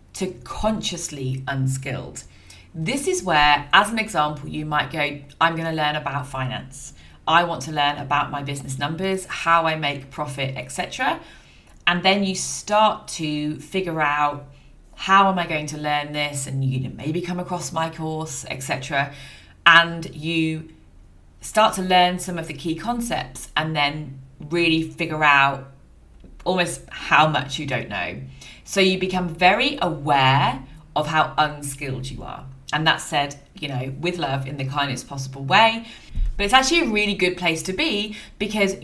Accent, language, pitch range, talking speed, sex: British, English, 140-185 Hz, 165 wpm, female